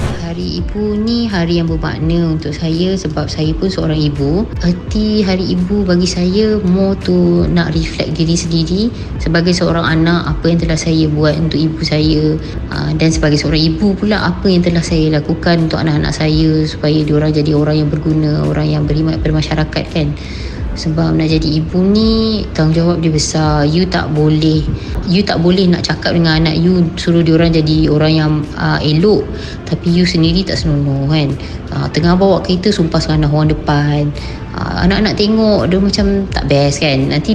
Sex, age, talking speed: female, 20-39, 180 wpm